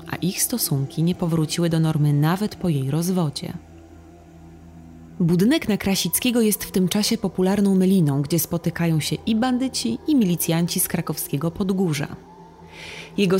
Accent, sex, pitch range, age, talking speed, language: native, female, 150-200 Hz, 20-39, 140 wpm, Polish